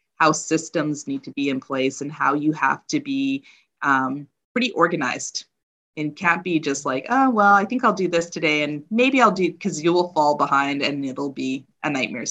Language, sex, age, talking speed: English, female, 20-39, 210 wpm